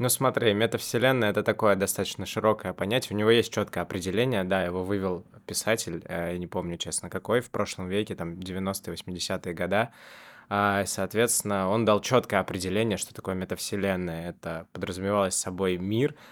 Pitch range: 95-110 Hz